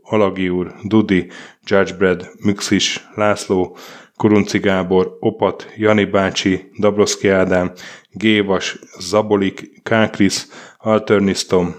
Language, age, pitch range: Hungarian, 20-39, 95-105 Hz